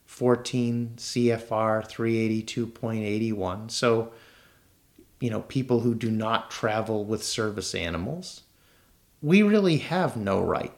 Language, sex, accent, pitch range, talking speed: English, male, American, 105-125 Hz, 105 wpm